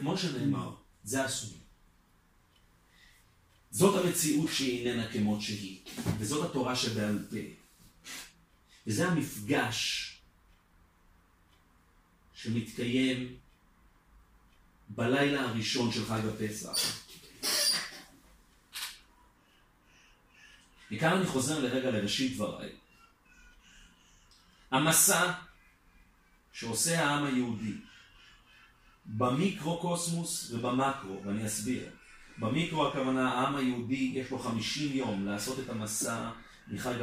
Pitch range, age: 110-135 Hz, 40-59